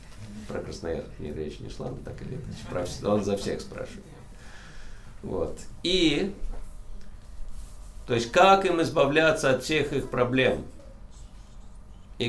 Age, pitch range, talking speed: 50-69, 100-125 Hz, 120 wpm